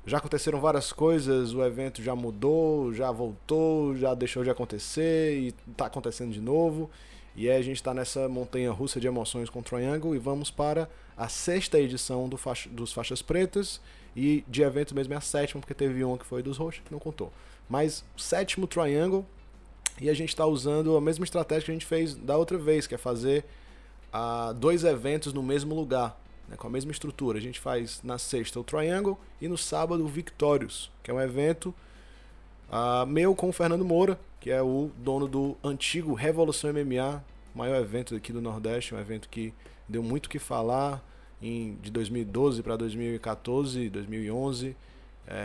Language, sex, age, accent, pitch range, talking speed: Portuguese, male, 20-39, Brazilian, 120-155 Hz, 185 wpm